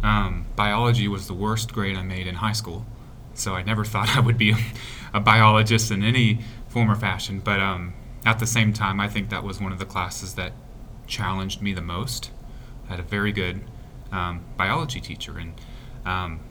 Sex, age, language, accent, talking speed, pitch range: male, 30-49, English, American, 200 wpm, 95-120 Hz